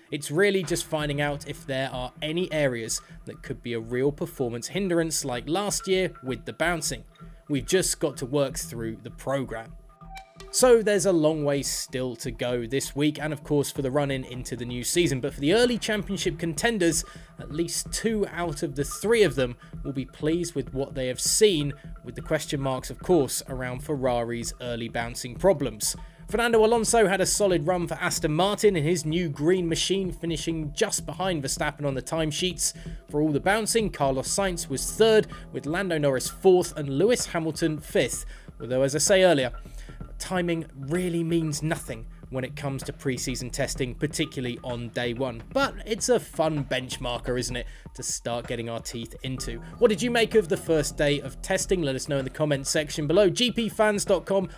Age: 20-39